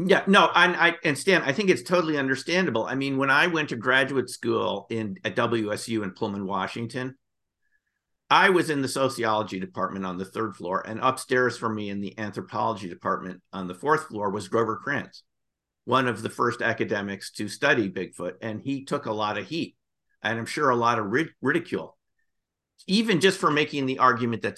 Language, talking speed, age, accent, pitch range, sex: English, 195 wpm, 50-69, American, 100-130 Hz, male